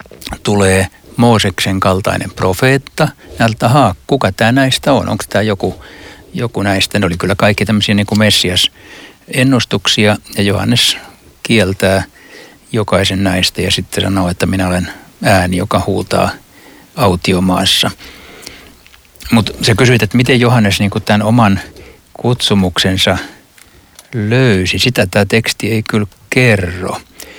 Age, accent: 60-79, native